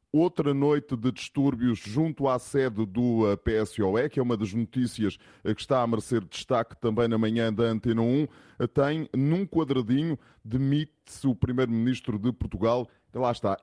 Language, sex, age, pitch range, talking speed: Portuguese, male, 20-39, 115-140 Hz, 160 wpm